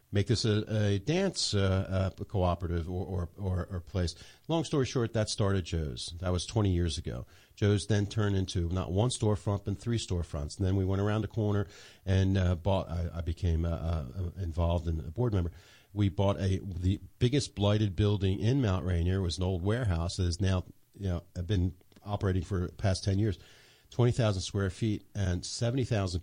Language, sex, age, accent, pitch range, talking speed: English, male, 50-69, American, 90-110 Hz, 200 wpm